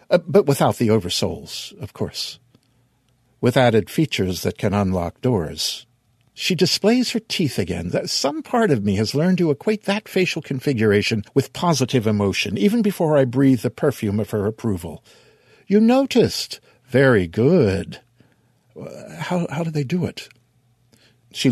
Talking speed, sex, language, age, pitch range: 150 wpm, male, English, 60-79, 110-150 Hz